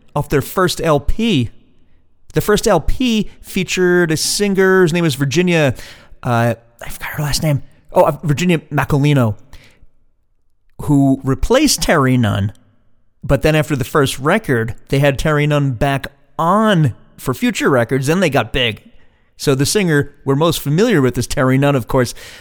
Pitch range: 125-170 Hz